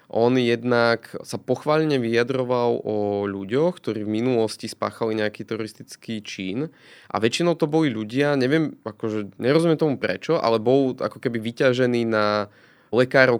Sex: male